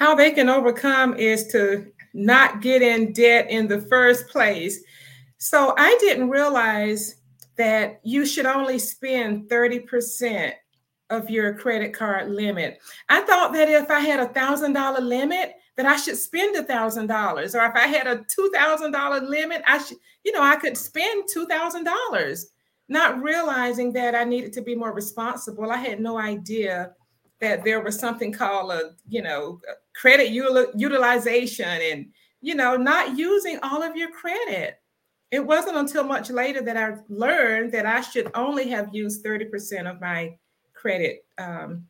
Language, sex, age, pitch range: English, female, 30-49, 215-280 Hz